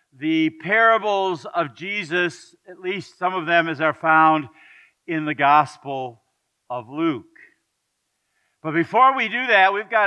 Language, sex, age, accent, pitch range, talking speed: English, male, 50-69, American, 155-215 Hz, 145 wpm